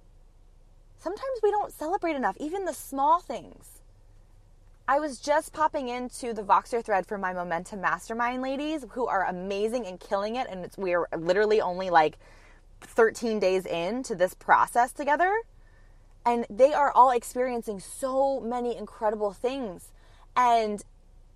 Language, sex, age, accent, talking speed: English, female, 20-39, American, 140 wpm